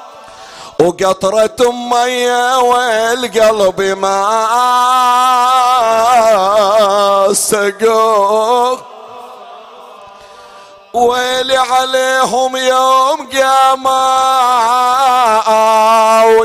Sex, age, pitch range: male, 50-69, 220-250 Hz